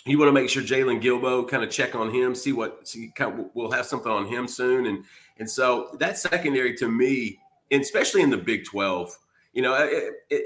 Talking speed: 225 wpm